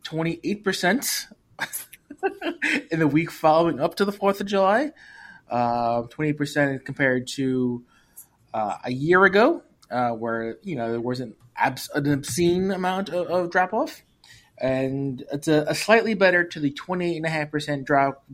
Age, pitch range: 20-39, 125-170 Hz